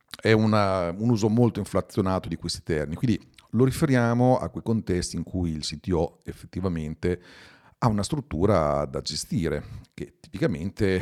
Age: 50-69